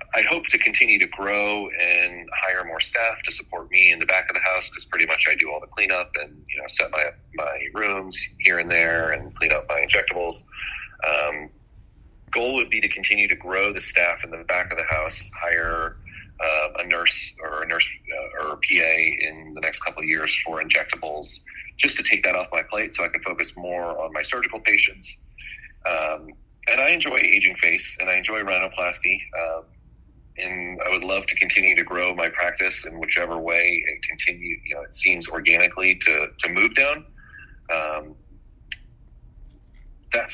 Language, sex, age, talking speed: English, male, 30-49, 190 wpm